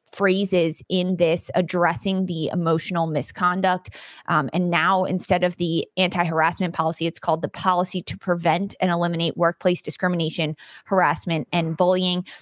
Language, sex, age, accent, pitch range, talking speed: English, female, 20-39, American, 165-190 Hz, 135 wpm